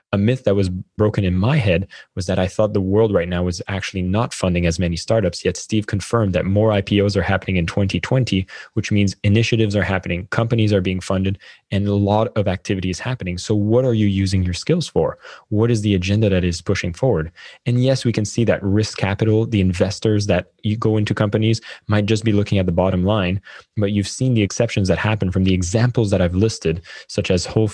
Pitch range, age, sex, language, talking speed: 90-110 Hz, 20-39, male, English, 225 wpm